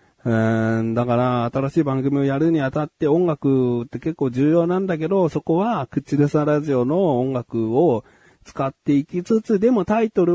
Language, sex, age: Japanese, male, 40-59